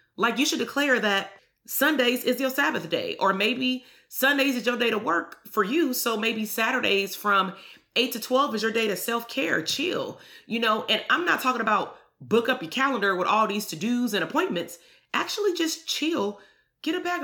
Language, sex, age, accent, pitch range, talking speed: English, female, 30-49, American, 205-265 Hz, 200 wpm